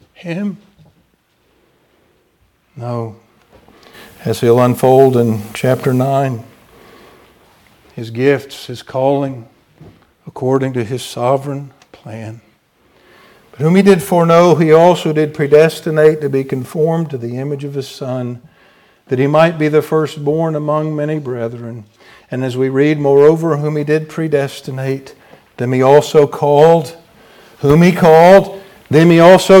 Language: English